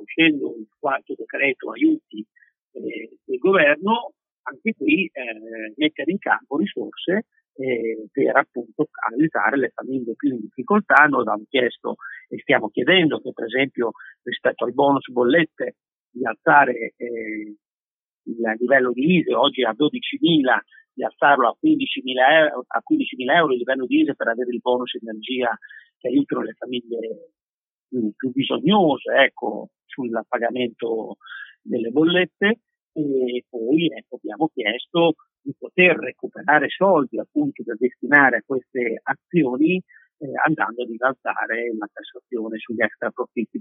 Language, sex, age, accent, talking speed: Italian, male, 50-69, native, 140 wpm